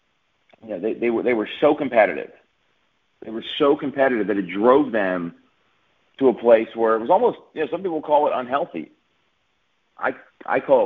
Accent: American